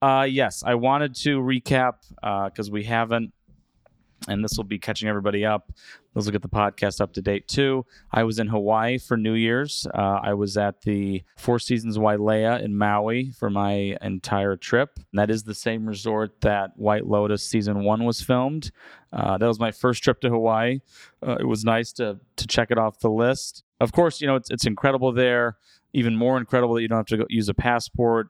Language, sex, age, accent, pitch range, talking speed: English, male, 30-49, American, 105-120 Hz, 210 wpm